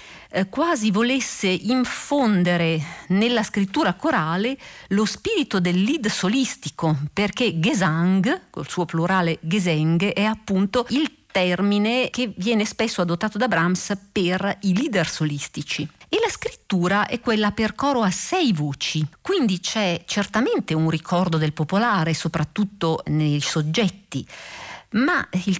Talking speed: 125 wpm